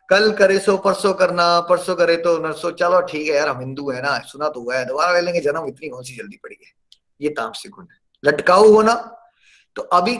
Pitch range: 185-240 Hz